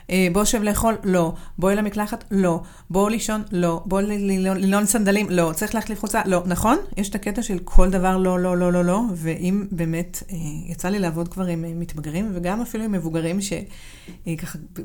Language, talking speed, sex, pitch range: Hebrew, 200 wpm, female, 170-205 Hz